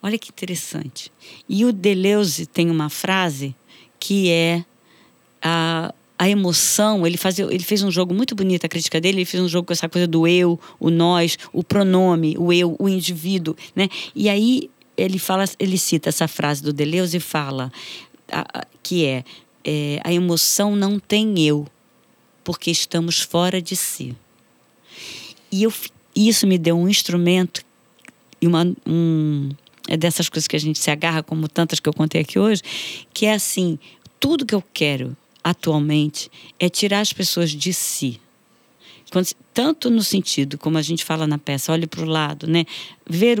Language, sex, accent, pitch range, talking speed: Portuguese, female, Brazilian, 160-195 Hz, 165 wpm